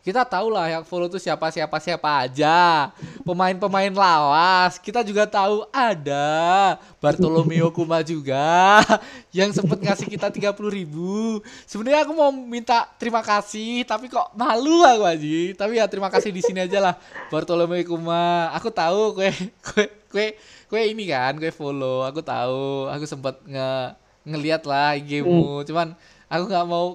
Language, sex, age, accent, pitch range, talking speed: Indonesian, male, 20-39, native, 145-195 Hz, 145 wpm